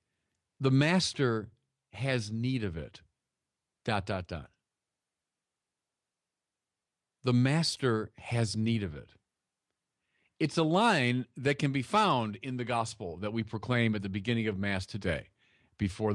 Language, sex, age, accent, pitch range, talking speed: English, male, 40-59, American, 105-150 Hz, 130 wpm